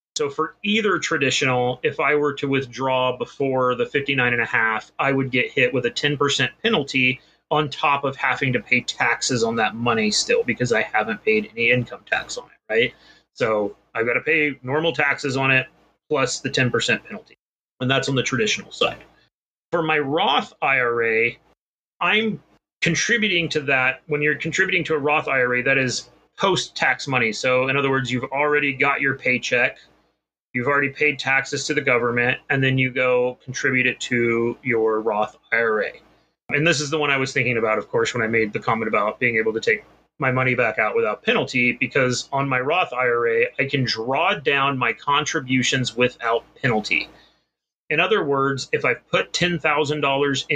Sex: male